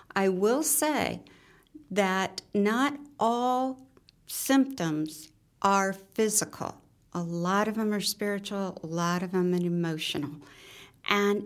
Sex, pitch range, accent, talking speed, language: female, 165-205 Hz, American, 115 wpm, English